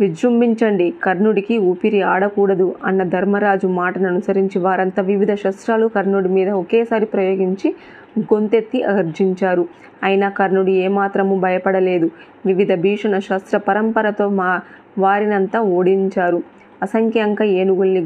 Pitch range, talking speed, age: 185-210 Hz, 95 wpm, 20-39